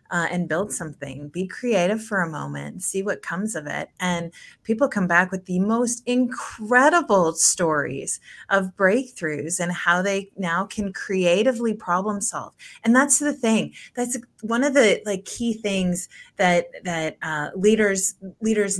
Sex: female